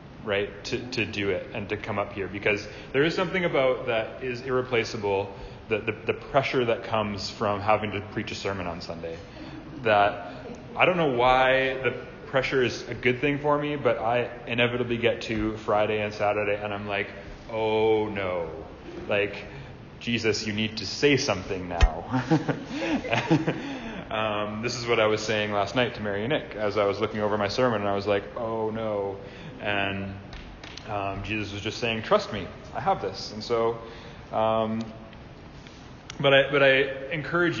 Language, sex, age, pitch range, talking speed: English, male, 30-49, 105-125 Hz, 175 wpm